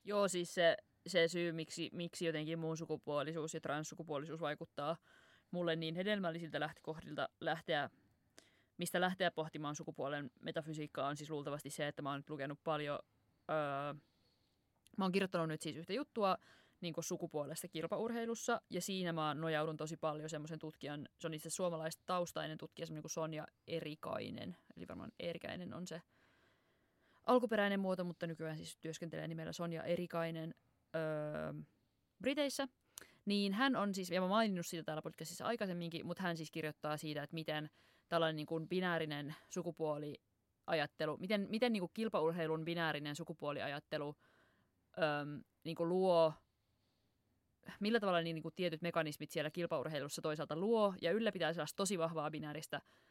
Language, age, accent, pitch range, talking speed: Finnish, 20-39, native, 150-175 Hz, 140 wpm